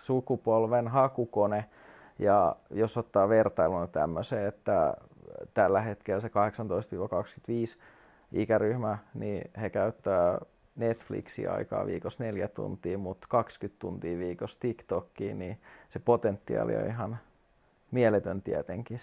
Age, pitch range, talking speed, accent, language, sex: 30-49, 100-115 Hz, 100 wpm, native, Finnish, male